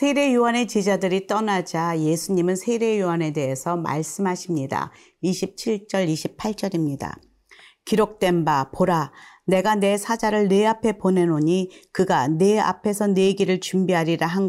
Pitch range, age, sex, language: 165-215 Hz, 40-59, female, Korean